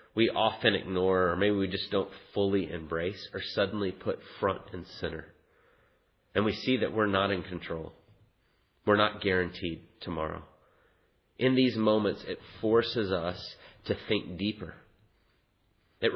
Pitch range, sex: 95-110 Hz, male